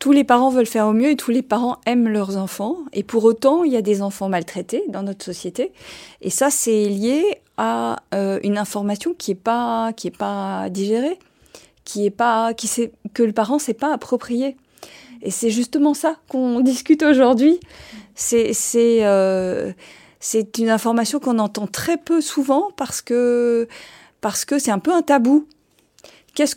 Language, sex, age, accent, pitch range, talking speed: French, female, 40-59, French, 205-265 Hz, 180 wpm